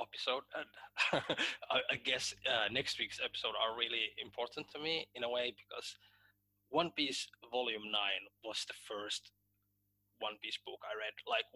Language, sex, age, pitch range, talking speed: English, male, 20-39, 100-125 Hz, 160 wpm